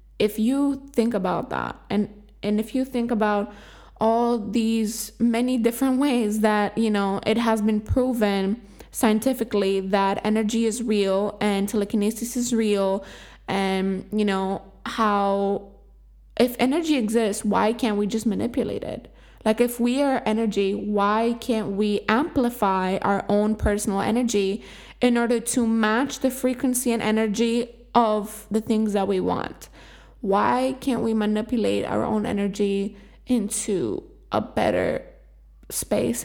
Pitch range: 205-235 Hz